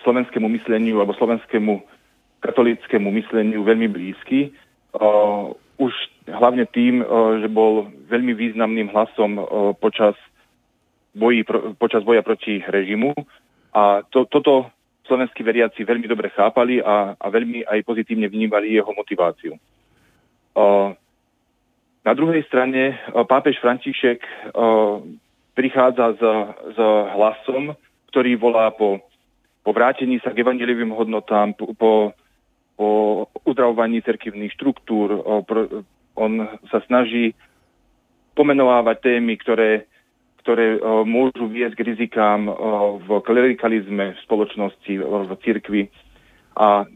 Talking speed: 110 wpm